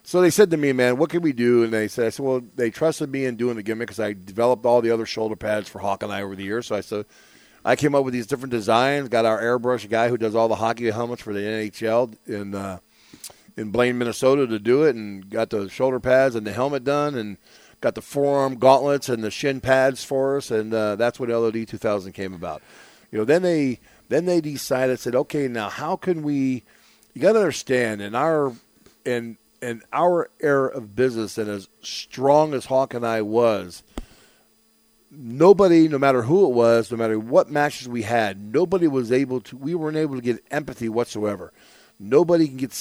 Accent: American